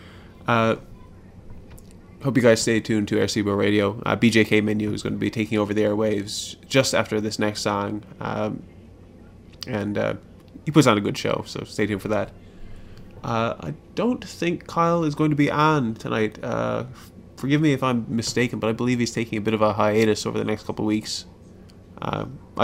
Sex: male